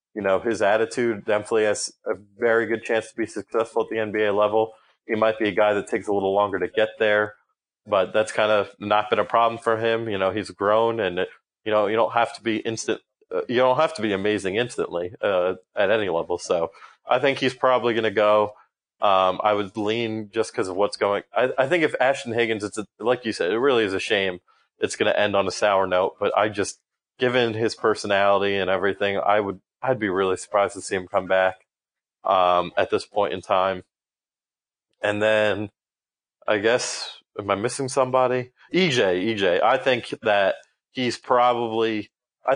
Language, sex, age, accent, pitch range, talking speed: English, male, 30-49, American, 100-115 Hz, 210 wpm